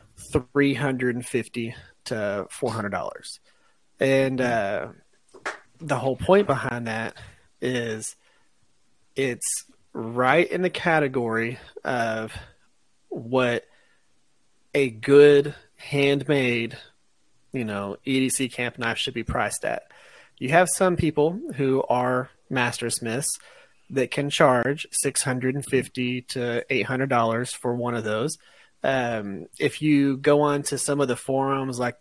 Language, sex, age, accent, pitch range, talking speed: English, male, 30-49, American, 120-135 Hz, 130 wpm